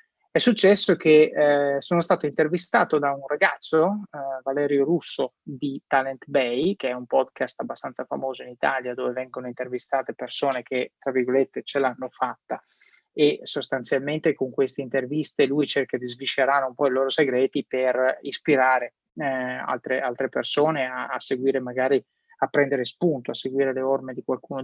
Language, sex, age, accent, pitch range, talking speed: Italian, male, 20-39, native, 130-155 Hz, 165 wpm